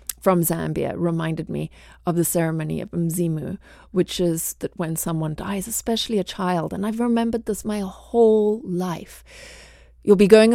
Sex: female